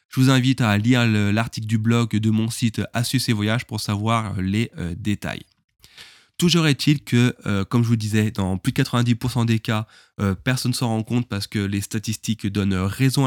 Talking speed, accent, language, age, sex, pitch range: 190 wpm, French, French, 20-39, male, 105-125 Hz